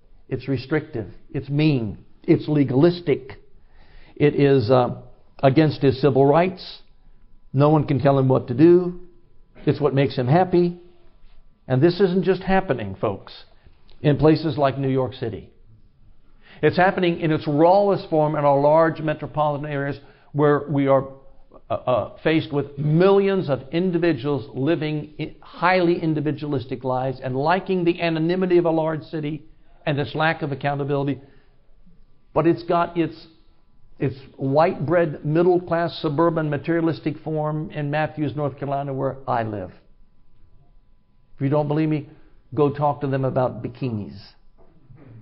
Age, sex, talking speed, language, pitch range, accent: 60-79, male, 140 wpm, English, 135-160 Hz, American